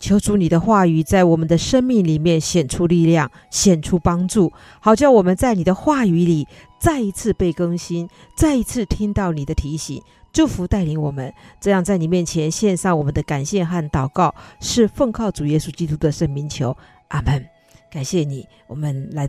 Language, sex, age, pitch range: Chinese, female, 50-69, 155-205 Hz